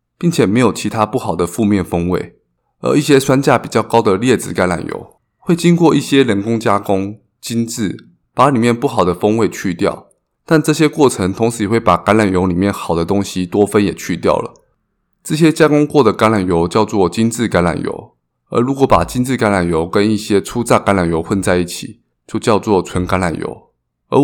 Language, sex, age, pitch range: Chinese, male, 20-39, 90-130 Hz